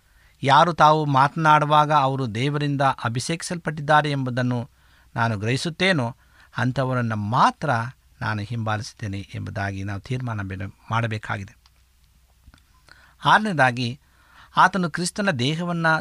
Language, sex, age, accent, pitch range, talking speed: Kannada, male, 50-69, native, 110-150 Hz, 80 wpm